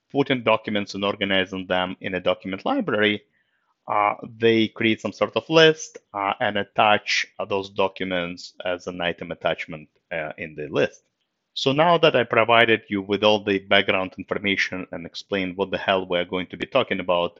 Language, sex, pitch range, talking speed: English, male, 95-125 Hz, 175 wpm